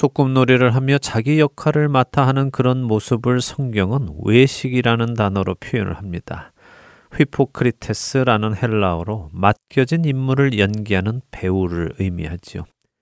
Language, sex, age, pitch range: Korean, male, 30-49, 100-130 Hz